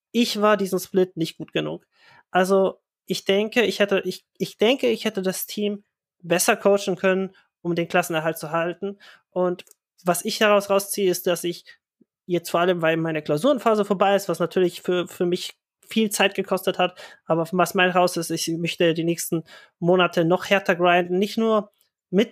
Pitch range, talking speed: 170-200 Hz, 185 wpm